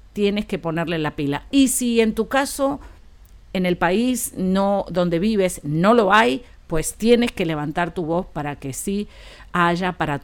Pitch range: 160-210 Hz